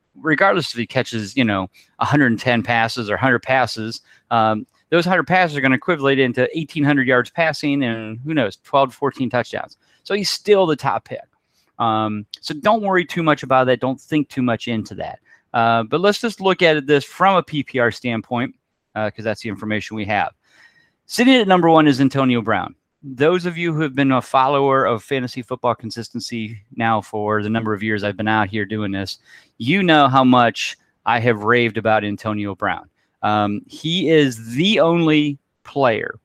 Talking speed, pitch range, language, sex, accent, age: 190 wpm, 115-150 Hz, English, male, American, 30-49